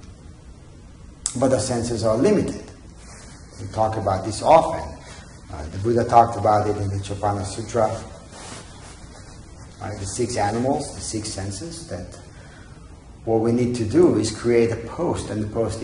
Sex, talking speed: male, 150 wpm